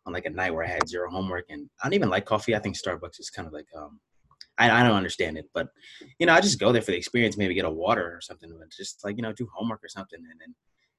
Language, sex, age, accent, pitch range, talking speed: English, male, 20-39, American, 90-115 Hz, 300 wpm